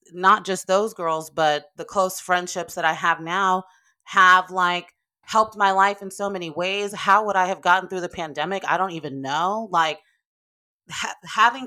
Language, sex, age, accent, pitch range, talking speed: English, female, 30-49, American, 150-190 Hz, 180 wpm